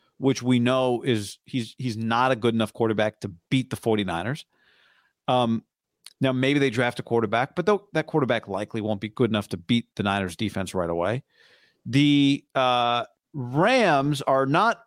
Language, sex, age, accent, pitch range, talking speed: English, male, 40-59, American, 115-160 Hz, 170 wpm